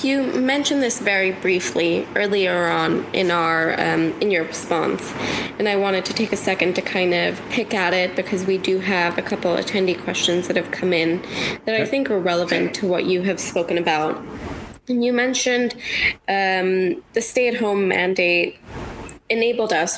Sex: female